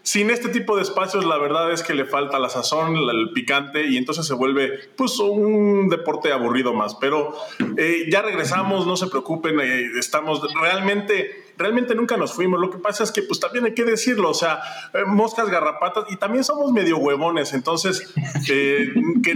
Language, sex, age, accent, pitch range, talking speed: Spanish, male, 30-49, Mexican, 145-215 Hz, 185 wpm